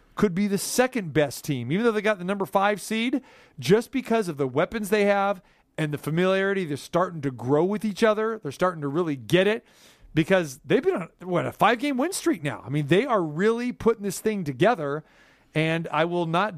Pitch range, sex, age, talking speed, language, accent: 155-200 Hz, male, 40-59, 220 wpm, English, American